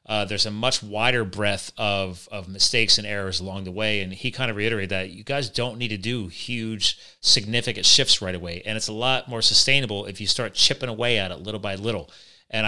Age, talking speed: 30-49, 225 wpm